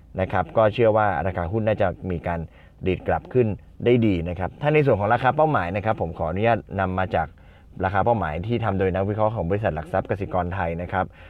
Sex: male